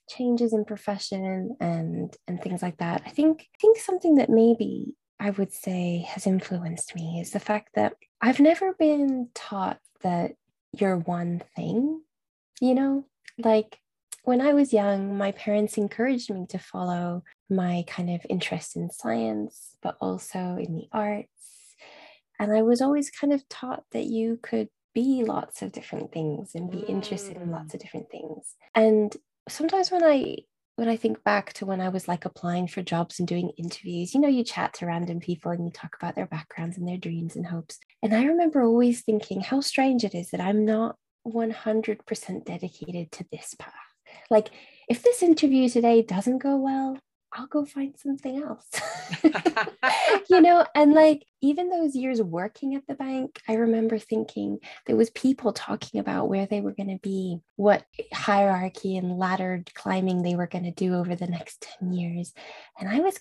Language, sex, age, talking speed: English, female, 10-29, 180 wpm